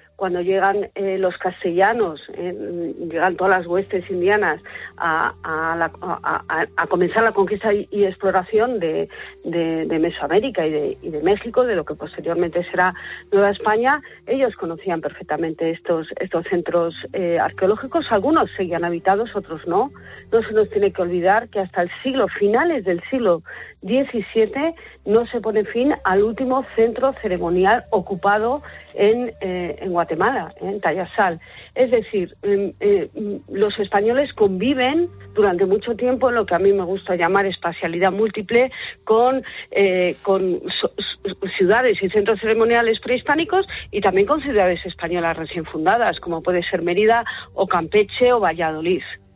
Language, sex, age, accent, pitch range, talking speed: Spanish, female, 50-69, Spanish, 180-230 Hz, 155 wpm